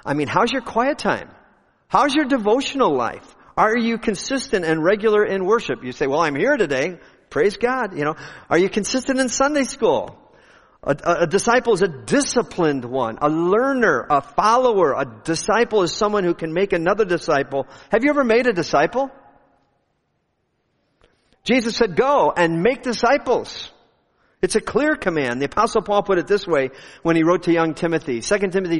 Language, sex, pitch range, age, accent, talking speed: English, male, 140-220 Hz, 50-69, American, 175 wpm